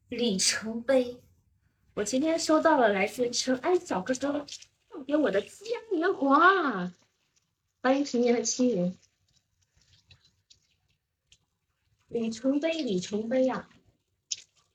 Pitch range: 195-280 Hz